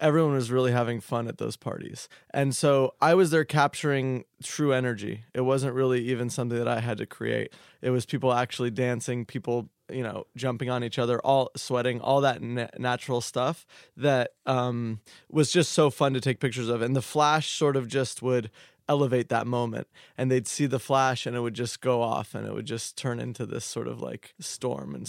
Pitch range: 120-140 Hz